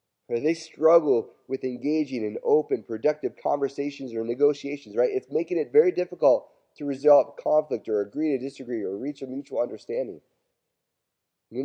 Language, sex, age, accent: English, male, 30-49, American